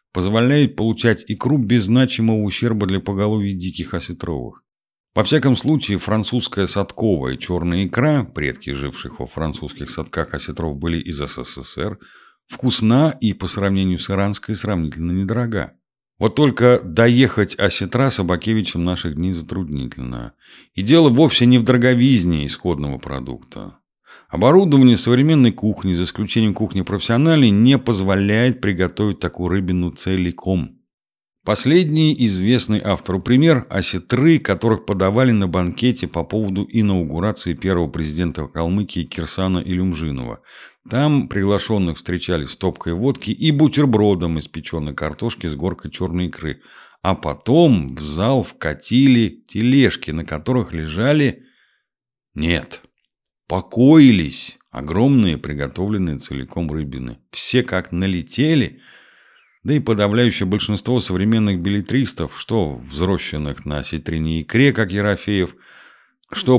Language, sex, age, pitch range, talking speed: Russian, male, 50-69, 85-115 Hz, 115 wpm